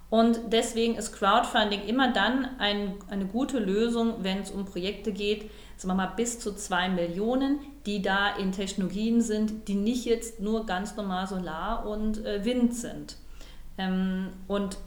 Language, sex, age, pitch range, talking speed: German, female, 40-59, 185-220 Hz, 155 wpm